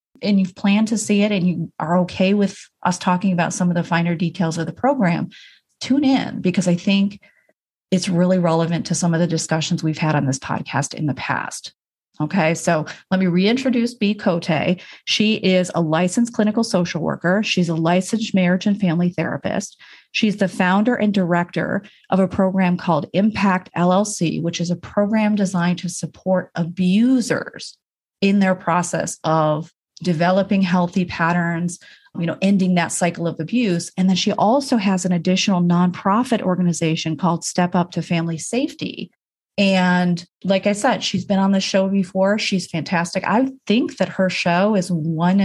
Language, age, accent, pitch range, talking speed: English, 40-59, American, 170-200 Hz, 175 wpm